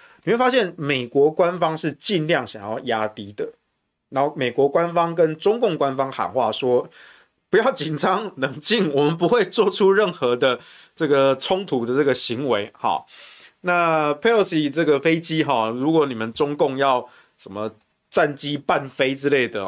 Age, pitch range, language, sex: 20-39, 125-170 Hz, Chinese, male